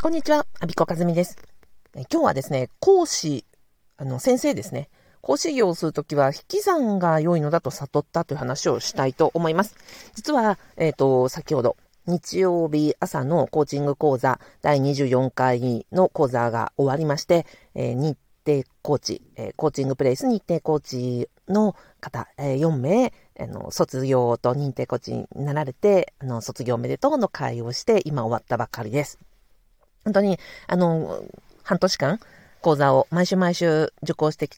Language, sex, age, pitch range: Japanese, female, 50-69, 130-170 Hz